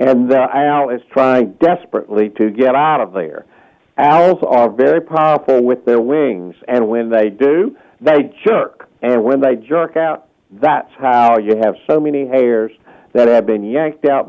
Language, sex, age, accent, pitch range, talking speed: English, male, 50-69, American, 120-155 Hz, 170 wpm